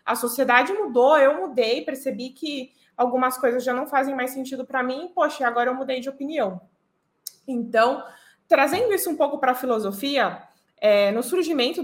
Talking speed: 170 wpm